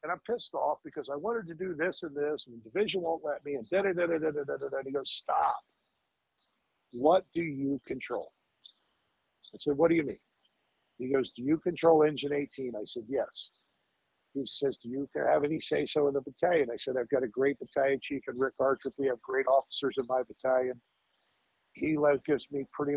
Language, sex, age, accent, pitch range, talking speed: English, male, 50-69, American, 130-175 Hz, 215 wpm